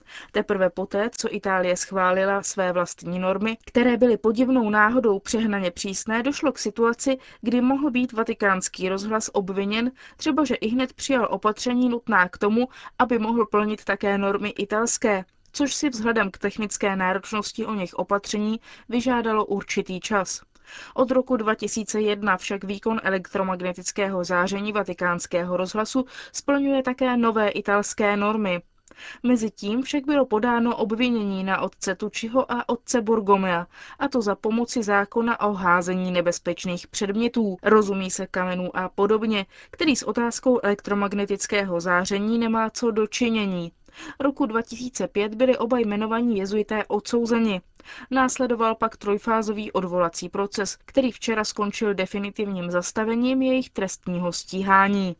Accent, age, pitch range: native, 20-39, 195-240 Hz